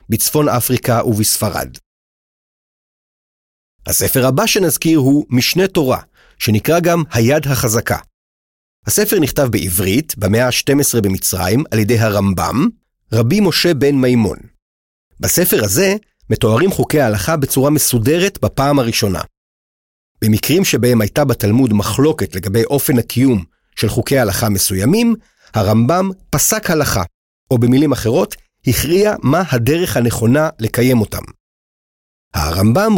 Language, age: Hebrew, 40-59